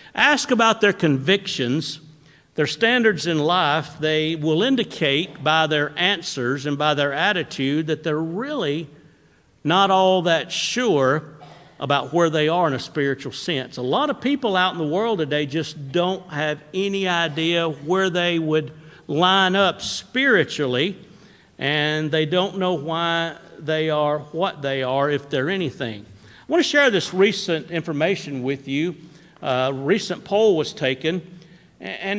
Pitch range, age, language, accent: 150-195 Hz, 50-69, English, American